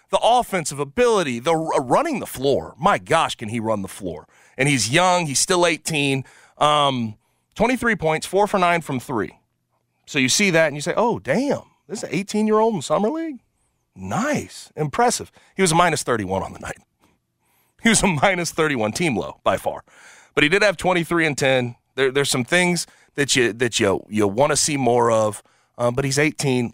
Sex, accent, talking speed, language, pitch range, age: male, American, 195 wpm, English, 135-185 Hz, 30-49